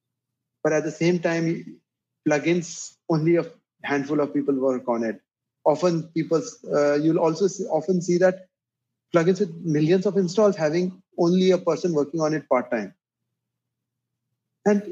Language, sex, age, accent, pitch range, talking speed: English, male, 30-49, Indian, 145-185 Hz, 155 wpm